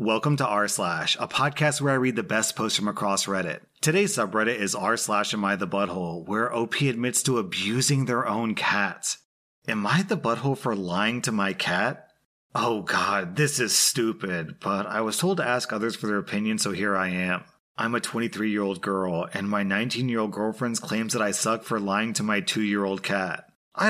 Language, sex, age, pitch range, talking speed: English, male, 30-49, 100-115 Hz, 200 wpm